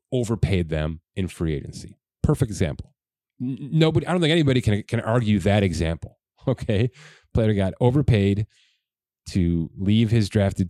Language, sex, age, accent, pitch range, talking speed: English, male, 30-49, American, 85-110 Hz, 140 wpm